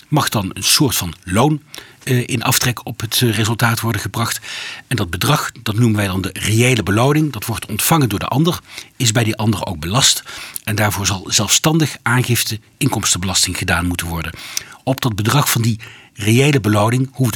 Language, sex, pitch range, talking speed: Dutch, male, 105-135 Hz, 180 wpm